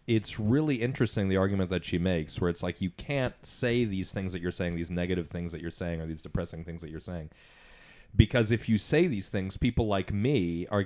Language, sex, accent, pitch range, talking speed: English, male, American, 90-120 Hz, 230 wpm